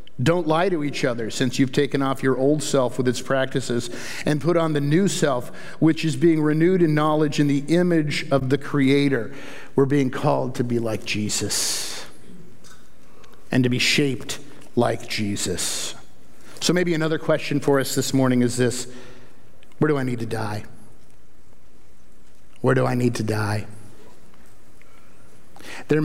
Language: English